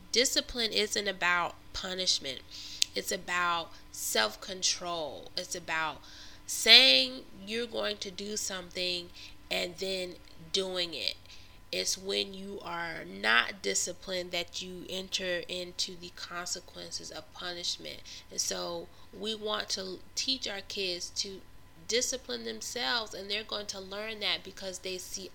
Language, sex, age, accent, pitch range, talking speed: English, female, 20-39, American, 175-240 Hz, 125 wpm